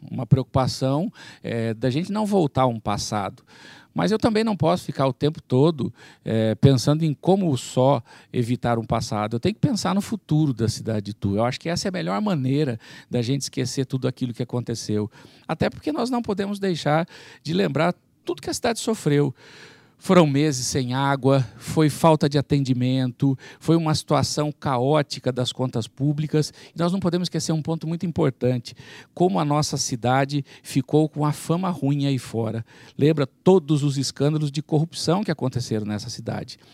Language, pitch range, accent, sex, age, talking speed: Portuguese, 125-160 Hz, Brazilian, male, 50-69, 180 wpm